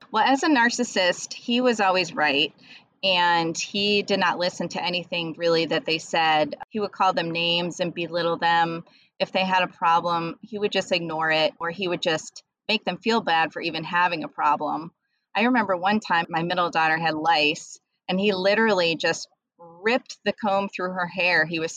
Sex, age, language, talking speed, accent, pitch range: female, 30-49, English, 195 wpm, American, 165-195 Hz